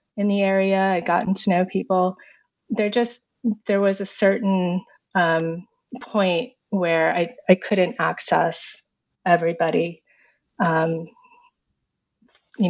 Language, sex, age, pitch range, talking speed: English, female, 30-49, 165-195 Hz, 115 wpm